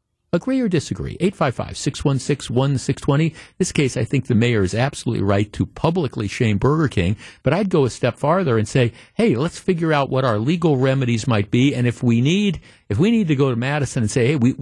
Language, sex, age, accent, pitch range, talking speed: English, male, 50-69, American, 110-145 Hz, 215 wpm